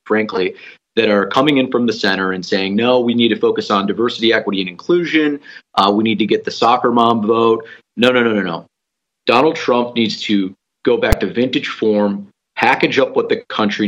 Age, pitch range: 30-49, 105-130 Hz